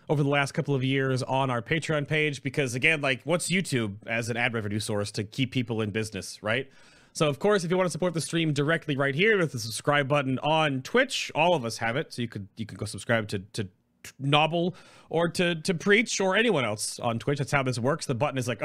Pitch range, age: 120-165 Hz, 30-49